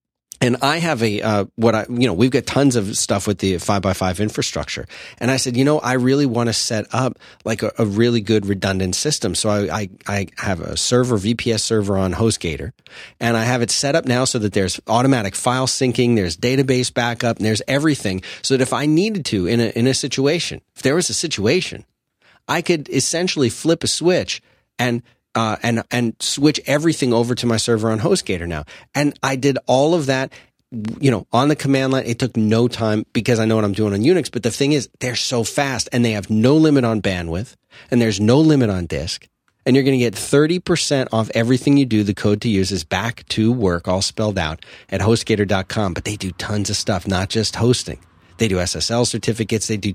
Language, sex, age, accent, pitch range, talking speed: English, male, 30-49, American, 105-130 Hz, 220 wpm